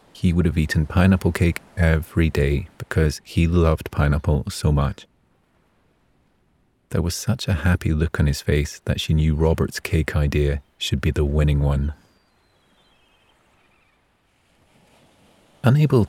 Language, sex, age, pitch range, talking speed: English, male, 30-49, 75-95 Hz, 130 wpm